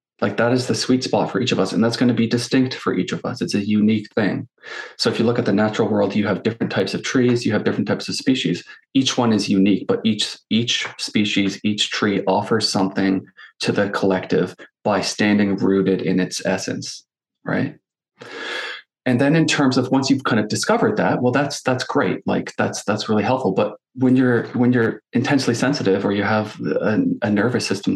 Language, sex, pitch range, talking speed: English, male, 100-125 Hz, 215 wpm